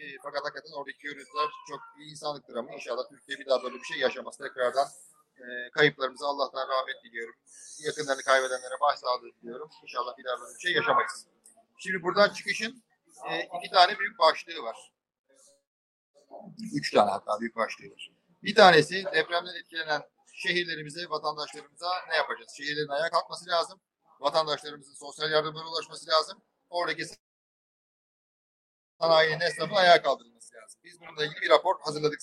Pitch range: 145-180 Hz